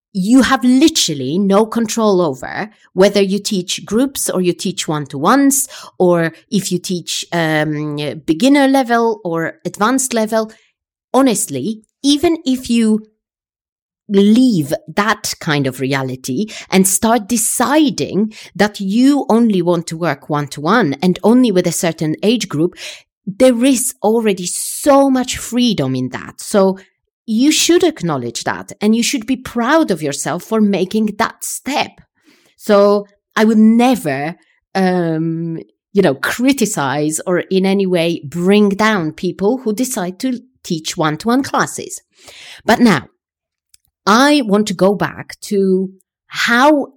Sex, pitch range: female, 170-235 Hz